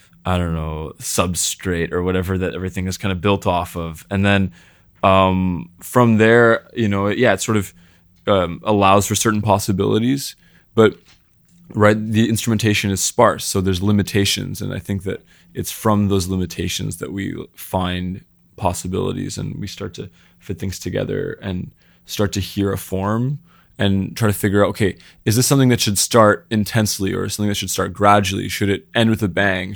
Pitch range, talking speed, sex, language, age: 95-110 Hz, 180 wpm, male, English, 20-39